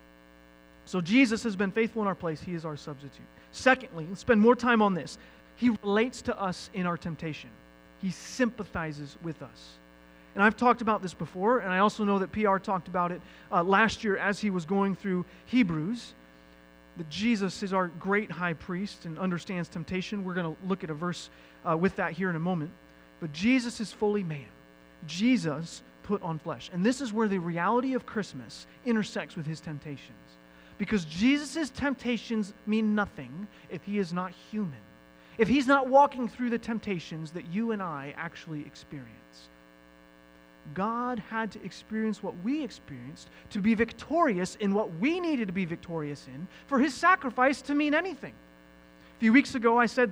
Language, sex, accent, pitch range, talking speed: English, male, American, 155-225 Hz, 180 wpm